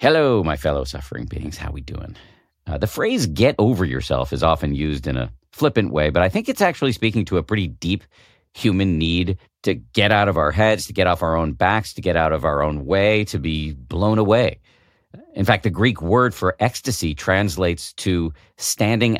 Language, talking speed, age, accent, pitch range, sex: English, 205 wpm, 50-69, American, 80-110 Hz, male